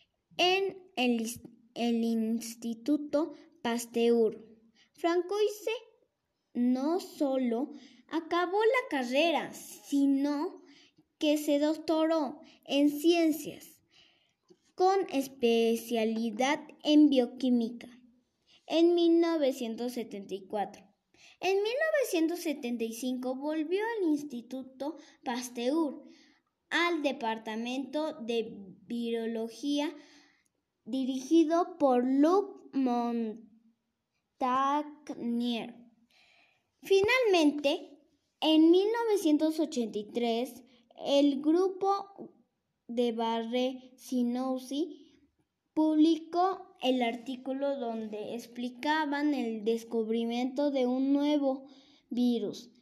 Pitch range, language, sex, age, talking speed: 235-315 Hz, Spanish, male, 10-29, 65 wpm